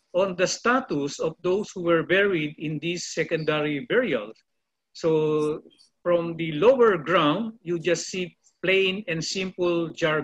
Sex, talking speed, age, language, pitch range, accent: male, 140 wpm, 50-69, English, 155-195 Hz, Filipino